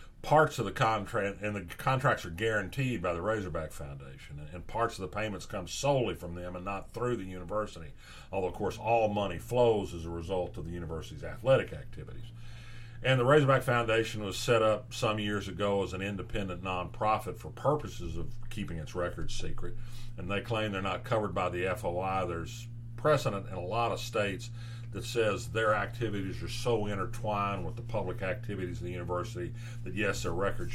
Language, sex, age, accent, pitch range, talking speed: English, male, 50-69, American, 95-115 Hz, 185 wpm